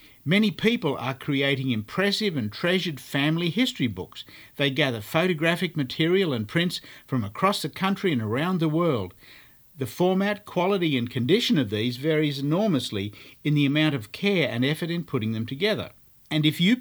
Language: English